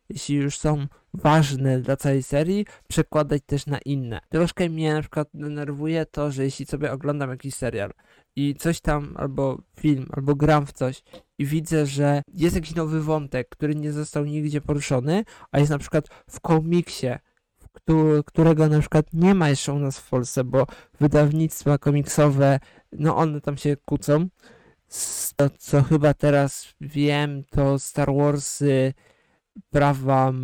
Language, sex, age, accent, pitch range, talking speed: Polish, male, 20-39, native, 140-155 Hz, 150 wpm